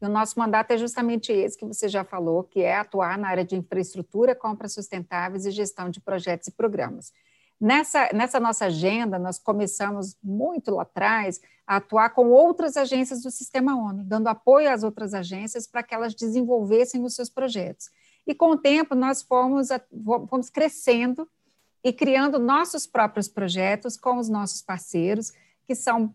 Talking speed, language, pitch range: 170 wpm, Portuguese, 195-250 Hz